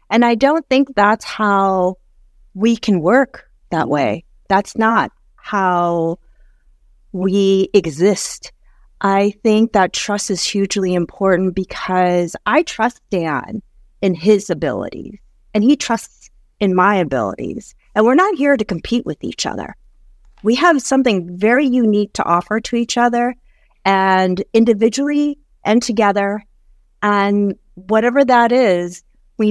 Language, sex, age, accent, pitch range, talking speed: English, female, 30-49, American, 195-270 Hz, 130 wpm